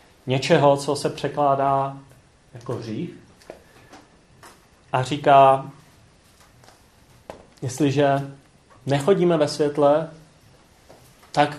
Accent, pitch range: native, 125-155 Hz